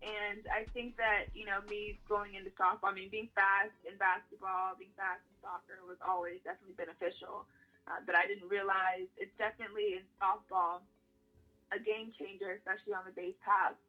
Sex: female